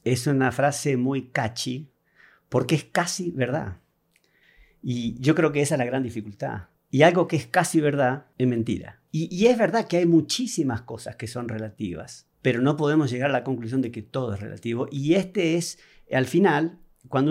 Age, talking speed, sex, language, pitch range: 50-69, 190 wpm, male, Spanish, 125-170 Hz